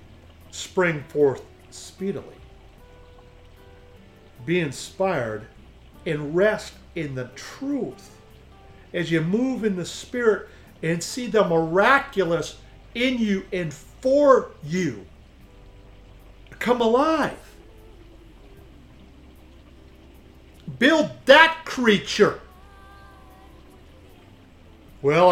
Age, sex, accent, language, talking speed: 50-69, male, American, English, 75 wpm